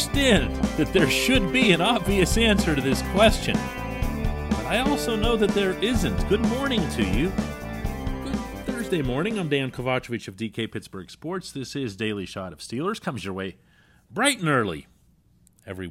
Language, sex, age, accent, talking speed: English, male, 40-59, American, 165 wpm